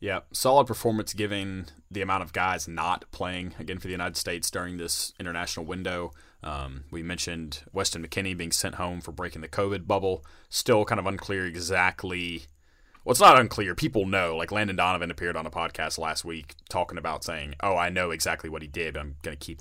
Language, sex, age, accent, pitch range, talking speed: English, male, 30-49, American, 75-95 Hz, 205 wpm